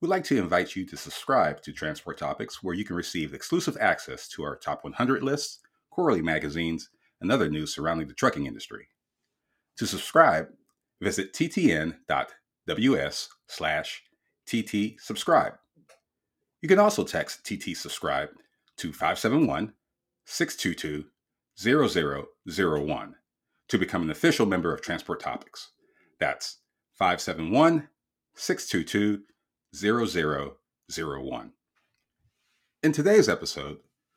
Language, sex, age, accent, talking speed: English, male, 40-59, American, 100 wpm